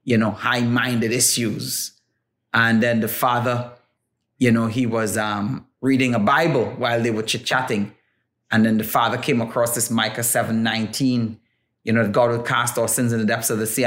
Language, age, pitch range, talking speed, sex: English, 30-49, 120-165 Hz, 185 wpm, male